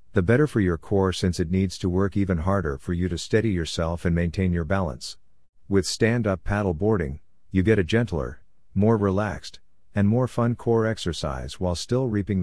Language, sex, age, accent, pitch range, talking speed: English, male, 50-69, American, 85-100 Hz, 195 wpm